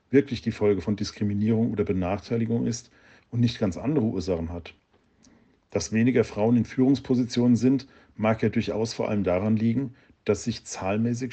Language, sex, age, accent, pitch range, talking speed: German, male, 50-69, German, 105-120 Hz, 160 wpm